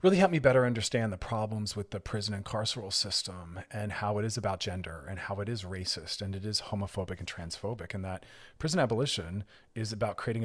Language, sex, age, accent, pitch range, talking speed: English, male, 30-49, American, 100-125 Hz, 215 wpm